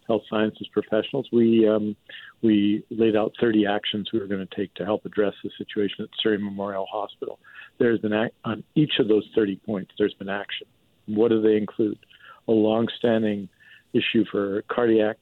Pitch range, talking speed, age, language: 105-115 Hz, 175 wpm, 50-69, English